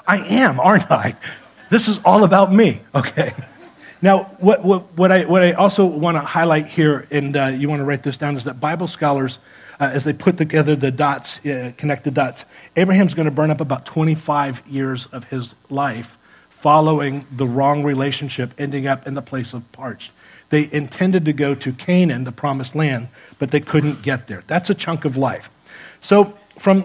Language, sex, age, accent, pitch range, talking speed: English, male, 40-59, American, 135-170 Hz, 195 wpm